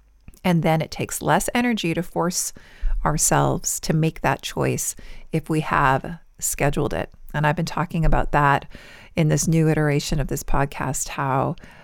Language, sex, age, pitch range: English, female, 40-59, 145-170 Hz